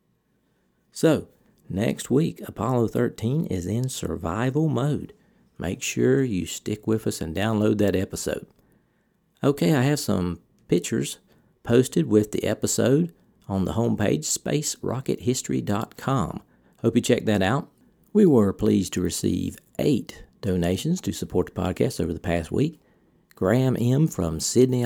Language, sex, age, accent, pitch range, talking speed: English, male, 50-69, American, 90-120 Hz, 135 wpm